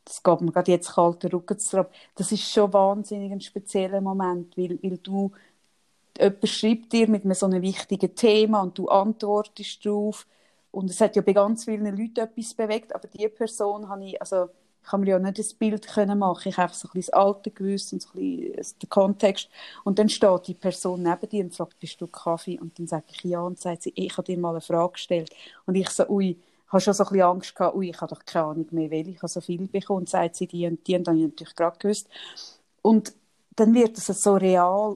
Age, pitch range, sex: 30-49, 180-210 Hz, female